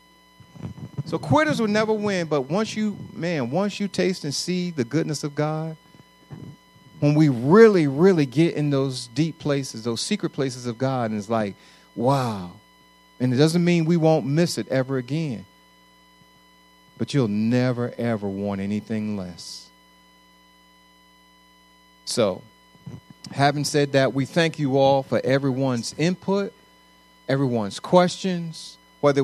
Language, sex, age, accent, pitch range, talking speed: English, male, 40-59, American, 135-165 Hz, 140 wpm